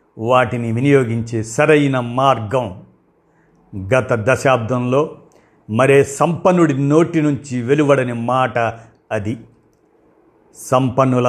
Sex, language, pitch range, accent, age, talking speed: male, Telugu, 120-150 Hz, native, 50-69, 75 wpm